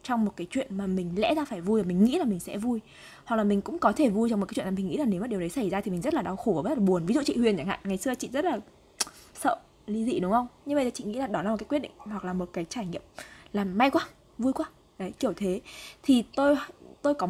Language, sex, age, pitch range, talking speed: Vietnamese, female, 20-39, 195-260 Hz, 325 wpm